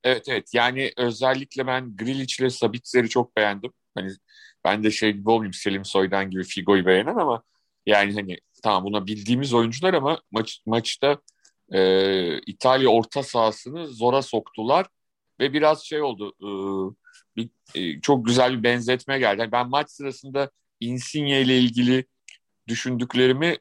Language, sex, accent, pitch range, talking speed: Turkish, male, native, 110-140 Hz, 140 wpm